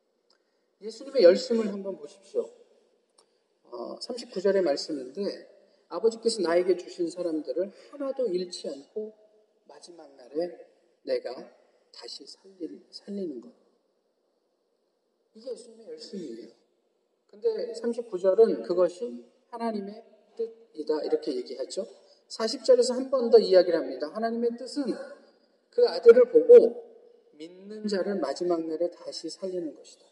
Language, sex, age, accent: Korean, male, 40-59, native